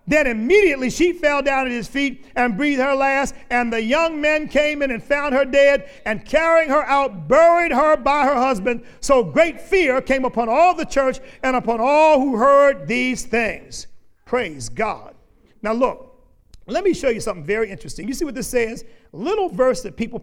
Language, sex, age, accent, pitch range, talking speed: English, male, 50-69, American, 200-280 Hz, 195 wpm